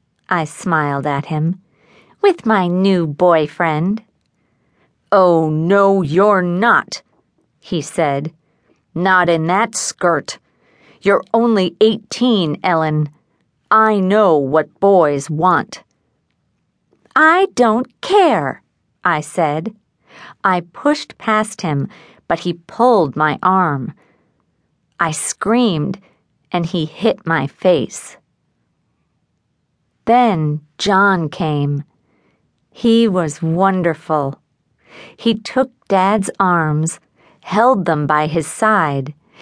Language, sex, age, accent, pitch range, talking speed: English, female, 50-69, American, 160-215 Hz, 95 wpm